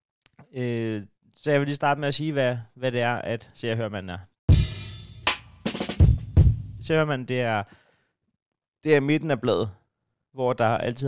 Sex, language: male, Danish